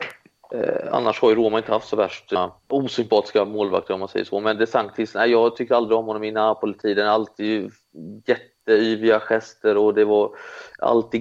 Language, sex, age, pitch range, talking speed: Swedish, male, 30-49, 105-120 Hz, 180 wpm